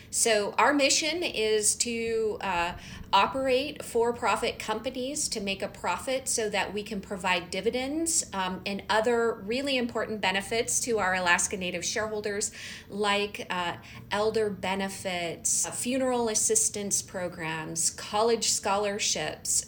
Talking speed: 125 wpm